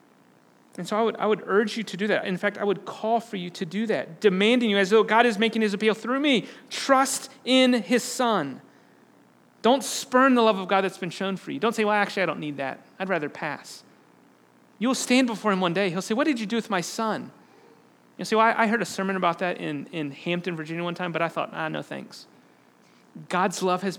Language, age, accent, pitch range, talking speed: English, 30-49, American, 175-230 Hz, 245 wpm